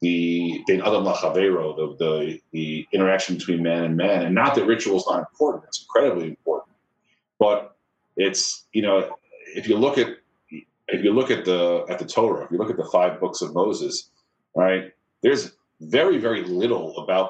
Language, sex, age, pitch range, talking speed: English, male, 40-59, 90-125 Hz, 170 wpm